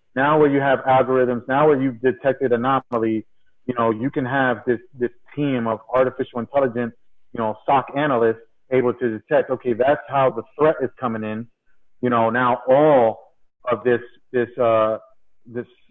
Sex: male